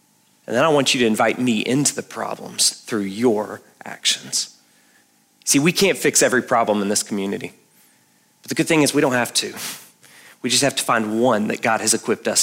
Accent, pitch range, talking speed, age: American, 130-175 Hz, 210 wpm, 30-49